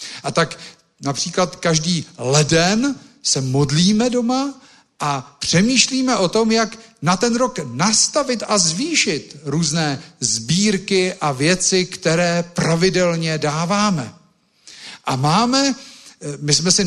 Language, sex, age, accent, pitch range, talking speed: Czech, male, 50-69, native, 150-215 Hz, 110 wpm